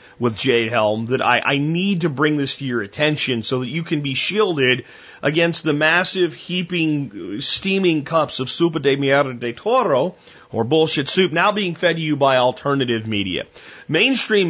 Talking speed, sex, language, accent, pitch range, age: 180 wpm, male, English, American, 130-170 Hz, 30-49